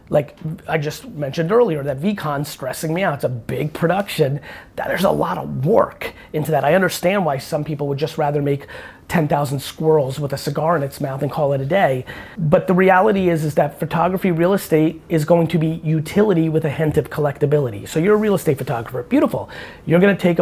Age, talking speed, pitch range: 30-49, 215 wpm, 145-180 Hz